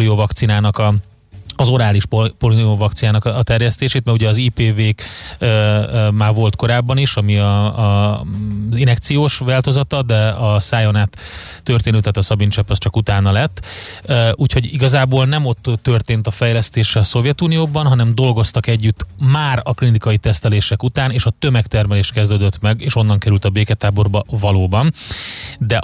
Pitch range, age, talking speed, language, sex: 105-125 Hz, 30-49, 150 wpm, Hungarian, male